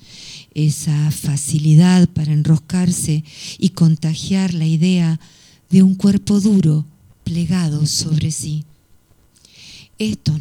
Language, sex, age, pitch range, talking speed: Spanish, female, 50-69, 155-175 Hz, 90 wpm